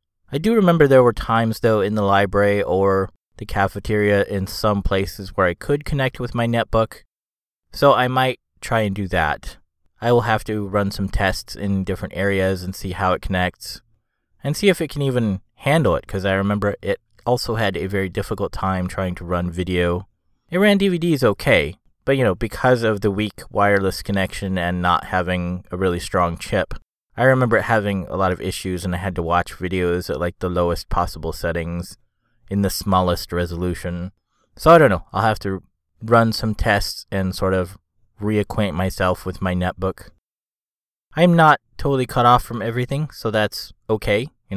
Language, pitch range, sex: English, 95-115 Hz, male